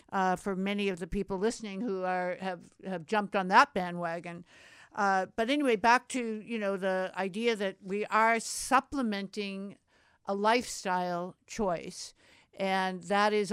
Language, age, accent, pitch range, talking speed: English, 60-79, American, 195-225 Hz, 150 wpm